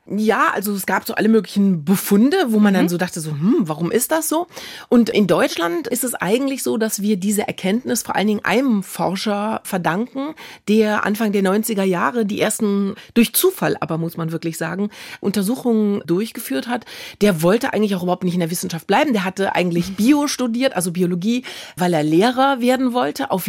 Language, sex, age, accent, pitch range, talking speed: German, female, 30-49, German, 165-215 Hz, 195 wpm